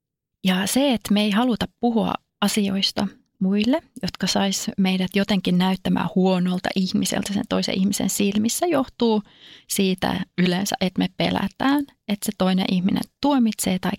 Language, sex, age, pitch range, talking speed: Finnish, female, 30-49, 195-230 Hz, 135 wpm